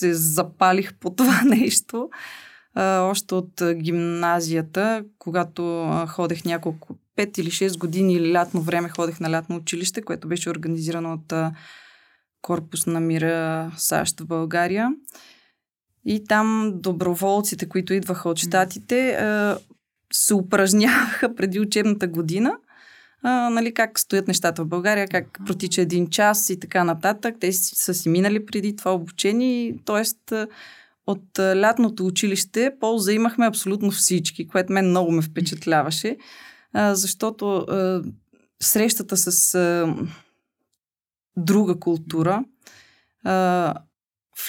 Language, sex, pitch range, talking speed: Bulgarian, female, 175-215 Hz, 110 wpm